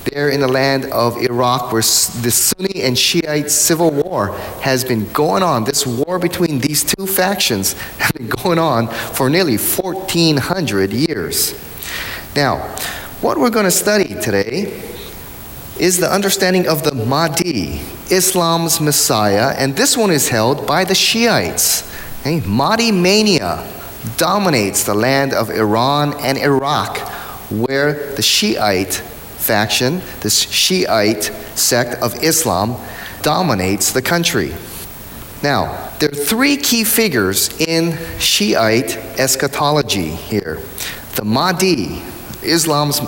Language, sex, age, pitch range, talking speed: English, male, 30-49, 110-170 Hz, 125 wpm